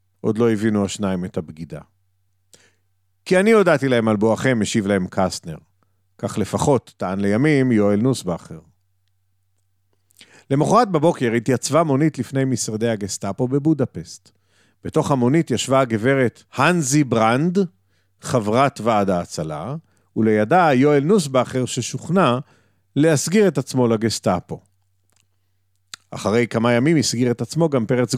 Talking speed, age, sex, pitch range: 115 wpm, 40-59, male, 95-150 Hz